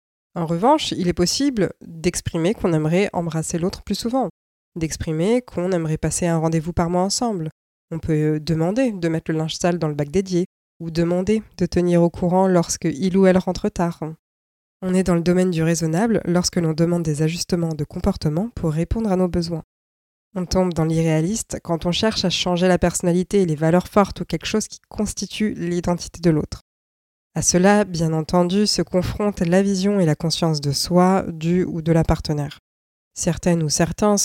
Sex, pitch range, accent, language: female, 160-190 Hz, French, French